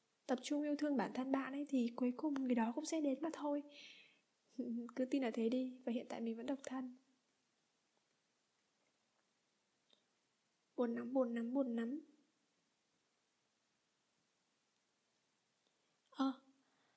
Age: 10-29